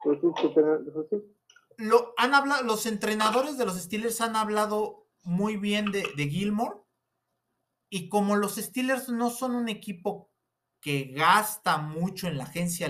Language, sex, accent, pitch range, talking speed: Spanish, male, Mexican, 145-200 Hz, 120 wpm